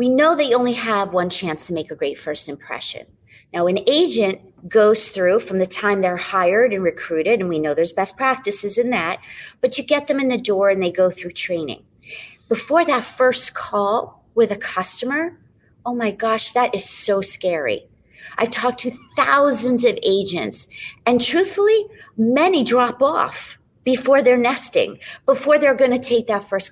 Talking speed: 180 wpm